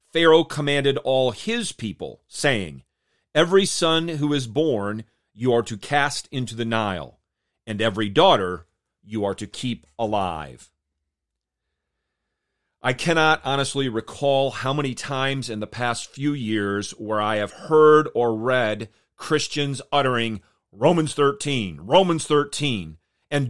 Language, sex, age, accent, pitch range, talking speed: English, male, 40-59, American, 110-150 Hz, 130 wpm